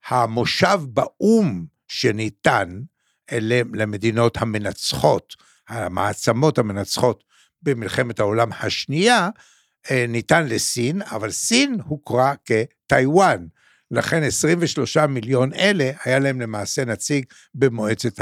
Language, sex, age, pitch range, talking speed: Hebrew, male, 60-79, 110-150 Hz, 80 wpm